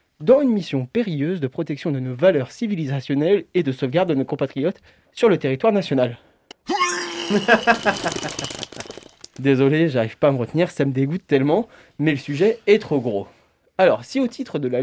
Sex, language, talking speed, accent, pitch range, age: male, French, 170 wpm, French, 130-180 Hz, 30-49